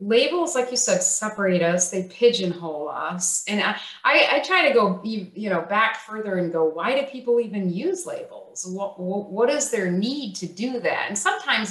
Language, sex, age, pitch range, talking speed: English, female, 30-49, 185-250 Hz, 195 wpm